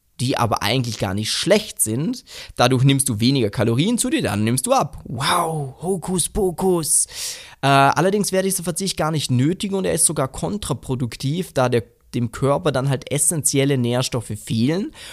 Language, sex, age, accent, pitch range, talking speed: German, male, 20-39, German, 125-170 Hz, 175 wpm